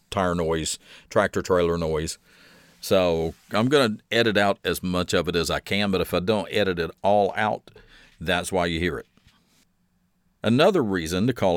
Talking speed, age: 175 wpm, 50-69